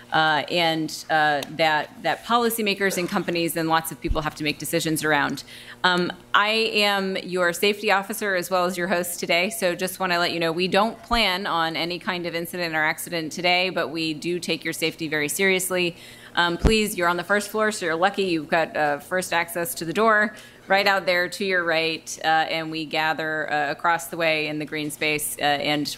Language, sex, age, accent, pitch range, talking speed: English, female, 30-49, American, 160-195 Hz, 215 wpm